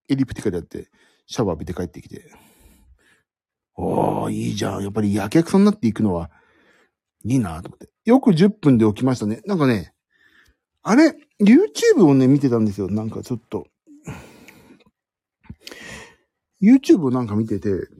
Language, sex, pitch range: Japanese, male, 105-165 Hz